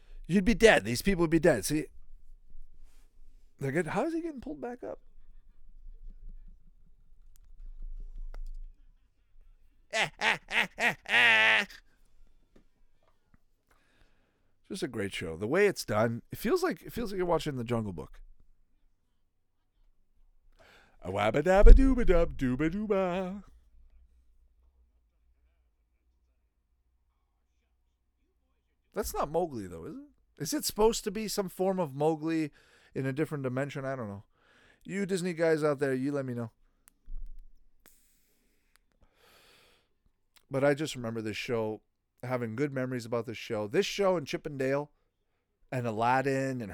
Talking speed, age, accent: 115 wpm, 50-69, American